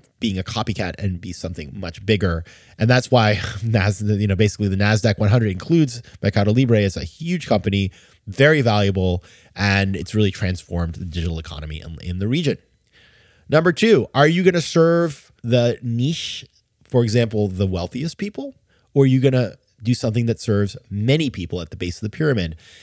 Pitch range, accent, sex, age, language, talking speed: 100-135 Hz, American, male, 20-39, English, 180 wpm